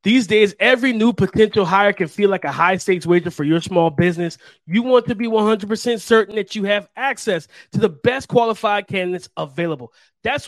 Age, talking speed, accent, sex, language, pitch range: 30-49, 195 wpm, American, male, English, 180-230 Hz